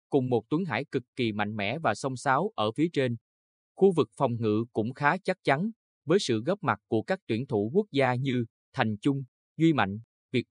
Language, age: Vietnamese, 20-39